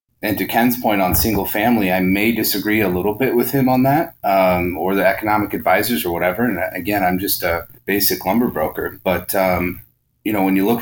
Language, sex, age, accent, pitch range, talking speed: English, male, 30-49, American, 95-115 Hz, 215 wpm